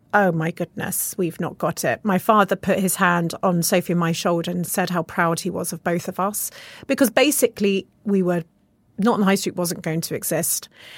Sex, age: female, 30-49